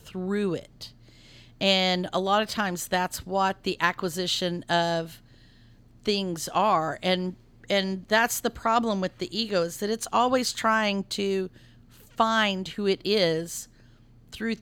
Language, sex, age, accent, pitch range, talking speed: English, female, 40-59, American, 165-195 Hz, 135 wpm